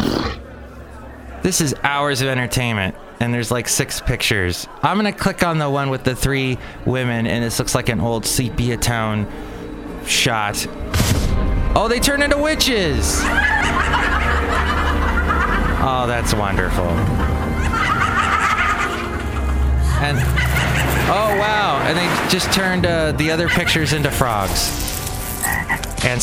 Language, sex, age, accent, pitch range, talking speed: English, male, 20-39, American, 100-150 Hz, 115 wpm